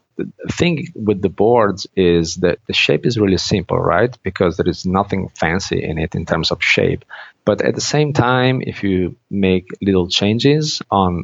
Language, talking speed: English, 185 wpm